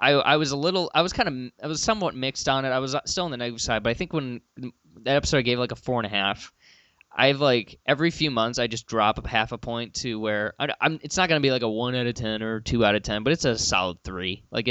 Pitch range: 110-135 Hz